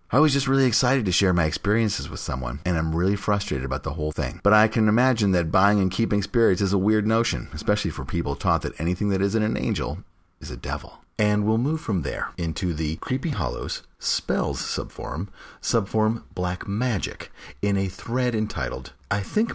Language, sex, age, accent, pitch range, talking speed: English, male, 40-59, American, 85-125 Hz, 200 wpm